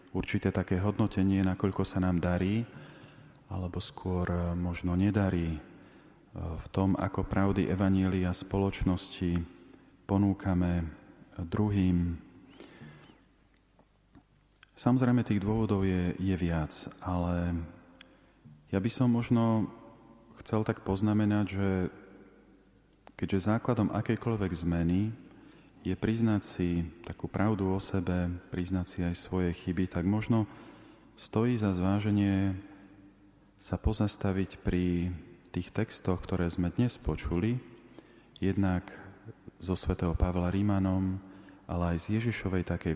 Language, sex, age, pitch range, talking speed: Slovak, male, 40-59, 90-105 Hz, 105 wpm